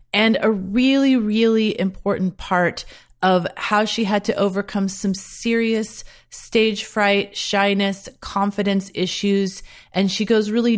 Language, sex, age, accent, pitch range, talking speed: English, female, 30-49, American, 175-225 Hz, 130 wpm